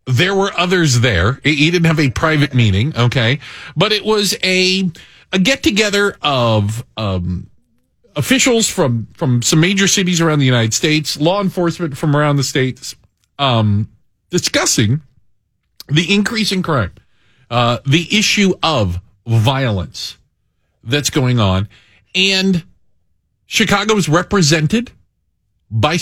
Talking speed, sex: 125 wpm, male